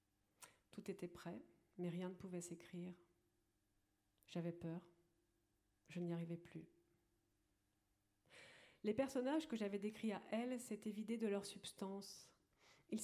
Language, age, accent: French, 40-59, French